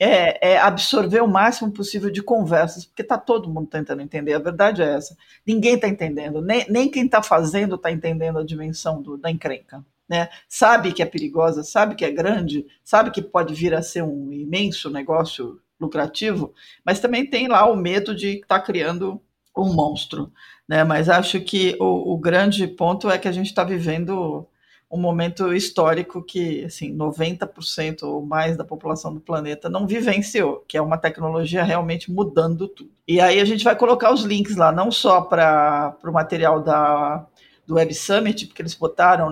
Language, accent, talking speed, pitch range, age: Portuguese, Brazilian, 180 wpm, 160-200 Hz, 50-69